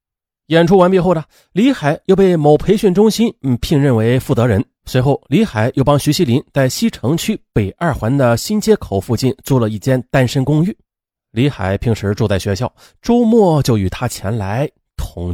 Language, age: Chinese, 30-49